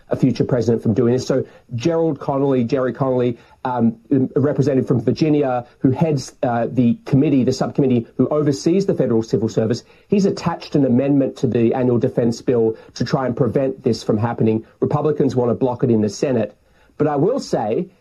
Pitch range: 115-145 Hz